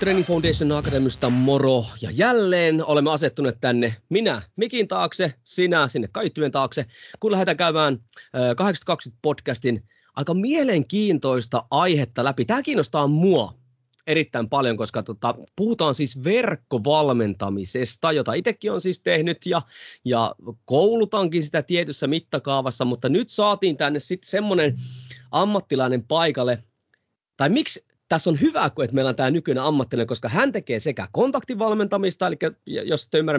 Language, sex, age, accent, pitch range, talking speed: Finnish, male, 30-49, native, 125-180 Hz, 135 wpm